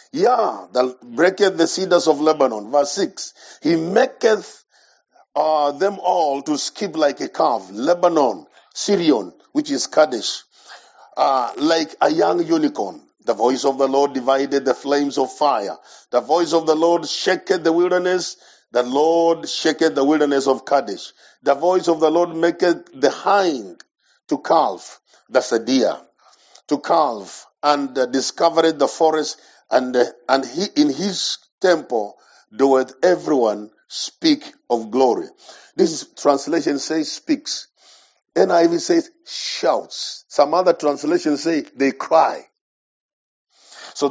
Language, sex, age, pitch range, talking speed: English, male, 50-69, 140-185 Hz, 135 wpm